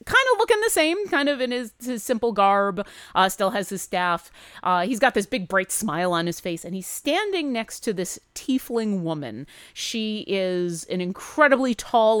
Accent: American